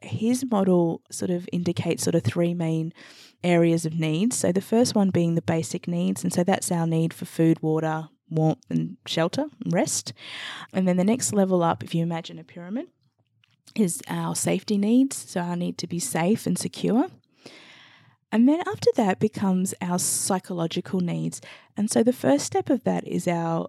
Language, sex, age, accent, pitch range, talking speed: English, female, 20-39, Australian, 160-190 Hz, 185 wpm